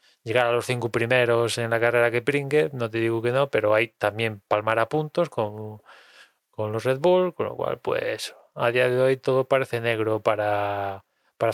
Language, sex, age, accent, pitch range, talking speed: Spanish, male, 20-39, Spanish, 115-140 Hz, 205 wpm